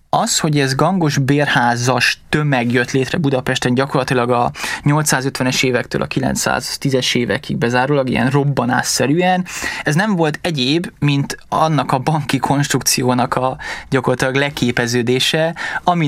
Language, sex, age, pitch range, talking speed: Hungarian, male, 20-39, 130-150 Hz, 120 wpm